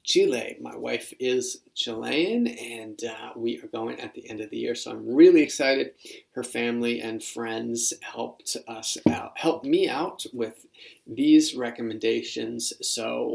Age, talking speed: 30-49, 155 wpm